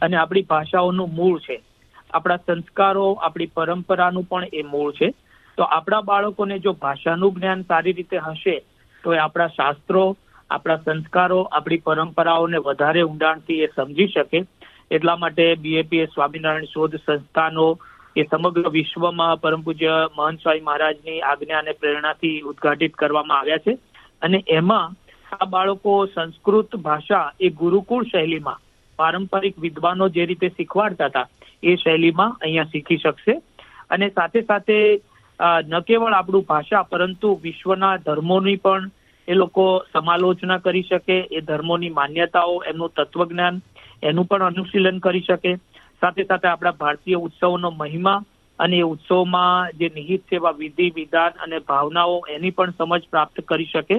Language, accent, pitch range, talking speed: Gujarati, native, 160-185 Hz, 105 wpm